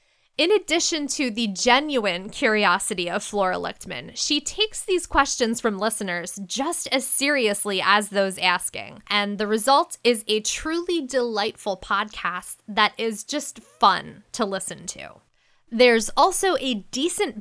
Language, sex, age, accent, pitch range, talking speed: English, female, 10-29, American, 200-280 Hz, 140 wpm